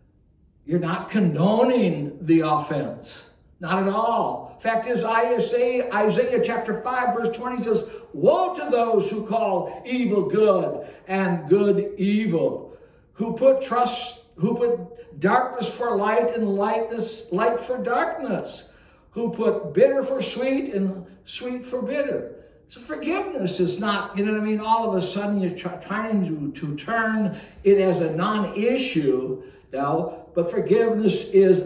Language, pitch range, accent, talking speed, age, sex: English, 175-230 Hz, American, 145 wpm, 60-79, male